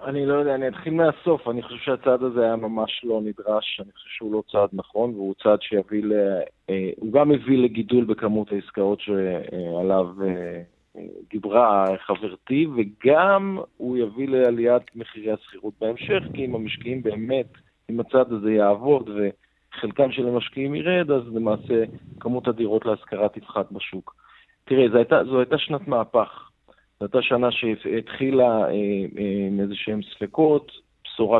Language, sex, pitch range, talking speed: Hebrew, male, 105-130 Hz, 140 wpm